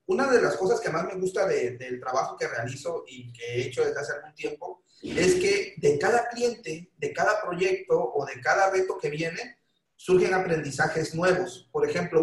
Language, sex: Spanish, male